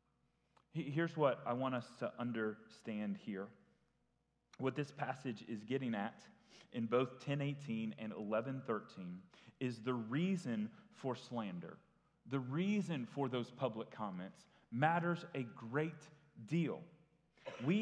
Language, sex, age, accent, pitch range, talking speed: English, male, 30-49, American, 125-175 Hz, 120 wpm